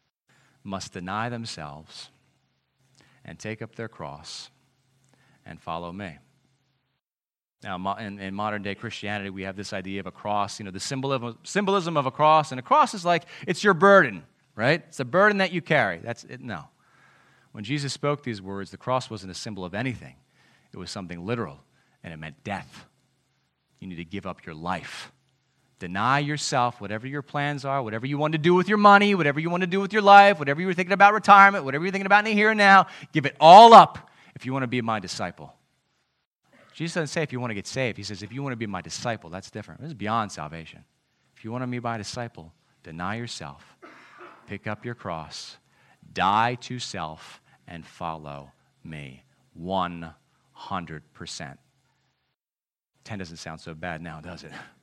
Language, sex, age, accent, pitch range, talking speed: English, male, 30-49, American, 95-145 Hz, 190 wpm